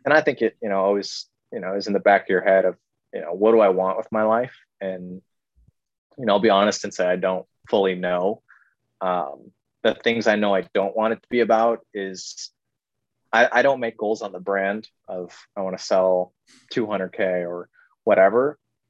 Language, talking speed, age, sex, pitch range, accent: English, 215 wpm, 20-39, male, 95-115 Hz, American